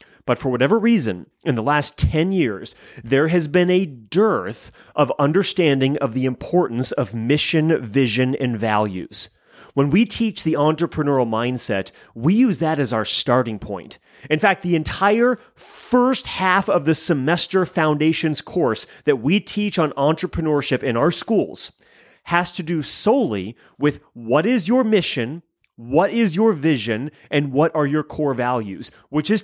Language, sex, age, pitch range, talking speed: English, male, 30-49, 135-200 Hz, 155 wpm